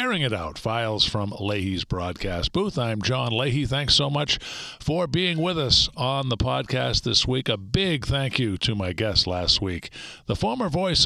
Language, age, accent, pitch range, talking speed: English, 50-69, American, 100-125 Hz, 185 wpm